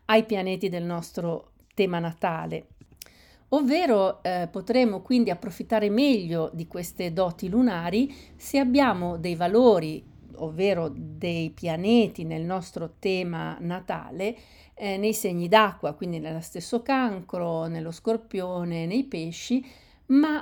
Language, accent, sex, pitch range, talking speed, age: Italian, native, female, 175-225 Hz, 120 wpm, 50-69